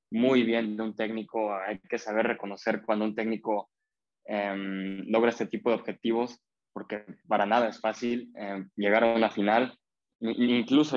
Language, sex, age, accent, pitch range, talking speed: Spanish, male, 20-39, Mexican, 105-120 Hz, 160 wpm